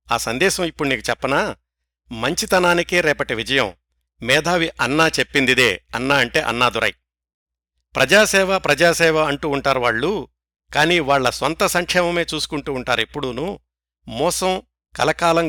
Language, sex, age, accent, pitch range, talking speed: Telugu, male, 60-79, native, 110-170 Hz, 110 wpm